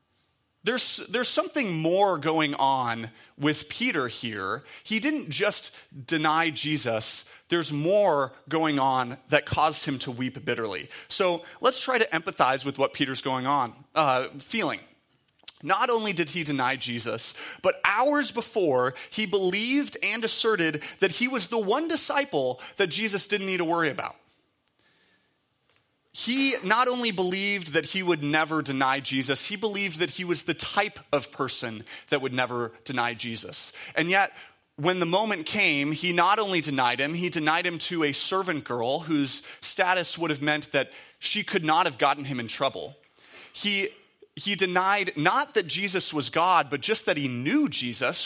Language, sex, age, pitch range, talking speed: English, male, 30-49, 140-200 Hz, 165 wpm